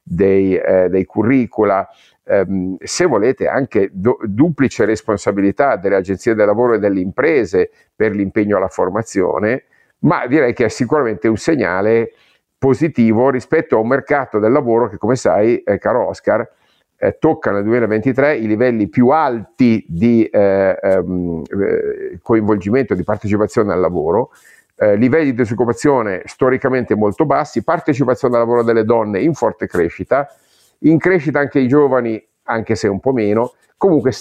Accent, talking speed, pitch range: native, 145 wpm, 105-135 Hz